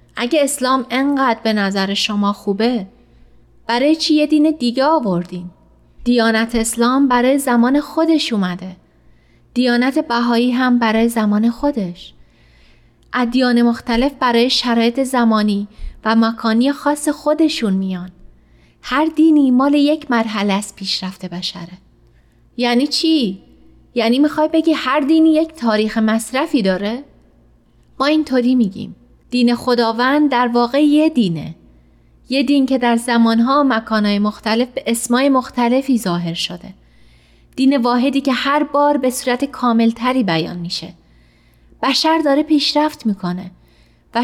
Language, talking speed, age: Persian, 125 wpm, 30-49